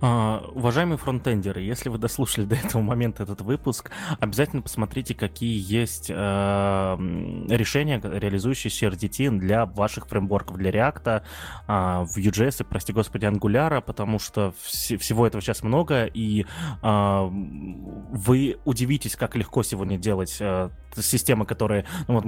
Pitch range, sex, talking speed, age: 100-125 Hz, male, 120 wpm, 20-39